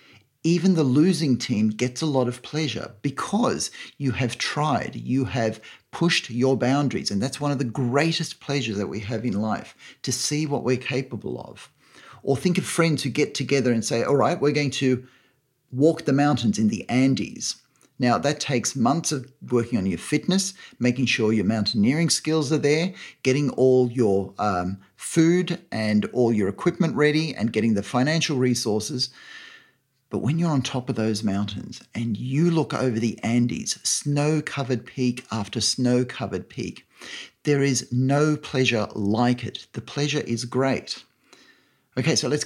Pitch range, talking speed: 115-150 Hz, 170 wpm